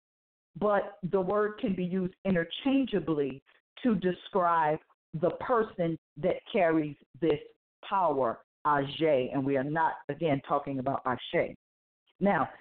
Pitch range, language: 145-190 Hz, English